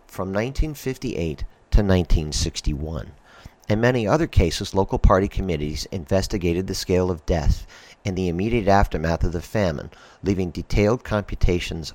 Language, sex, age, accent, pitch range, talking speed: English, male, 50-69, American, 85-105 Hz, 130 wpm